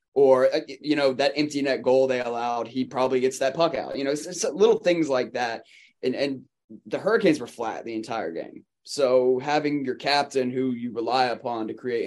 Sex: male